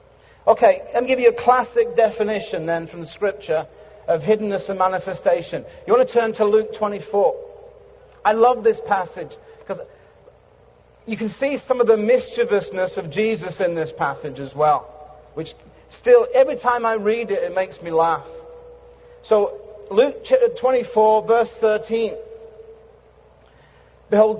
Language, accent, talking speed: English, British, 145 wpm